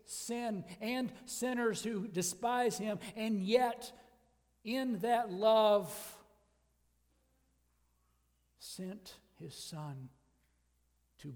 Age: 60-79